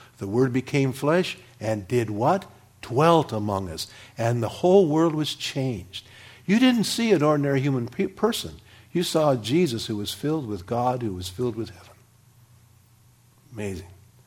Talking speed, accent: 155 wpm, American